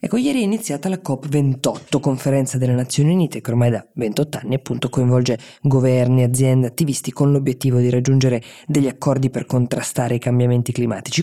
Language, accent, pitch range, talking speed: Italian, native, 125-155 Hz, 165 wpm